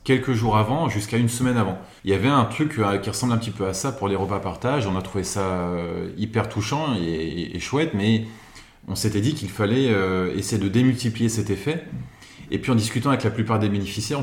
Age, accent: 30-49, French